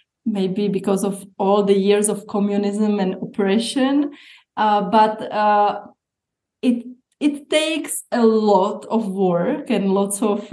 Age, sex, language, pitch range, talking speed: 20-39, female, English, 200-230 Hz, 130 wpm